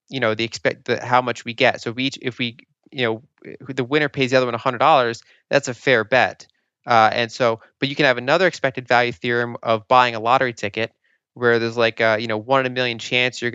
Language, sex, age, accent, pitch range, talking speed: English, male, 20-39, American, 115-130 Hz, 255 wpm